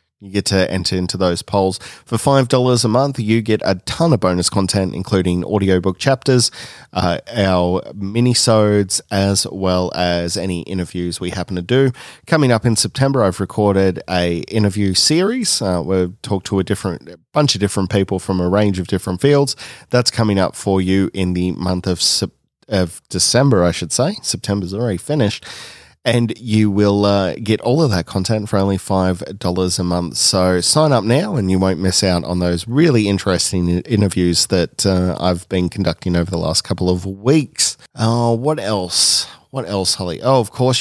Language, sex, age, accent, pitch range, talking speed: English, male, 20-39, Australian, 90-115 Hz, 185 wpm